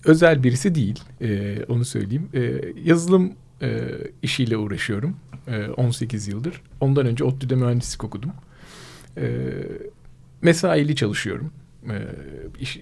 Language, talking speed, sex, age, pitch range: Turkish, 110 wpm, male, 40-59, 120-150 Hz